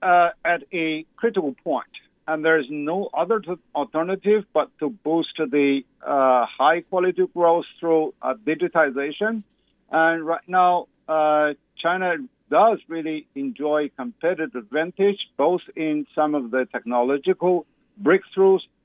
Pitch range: 145-185 Hz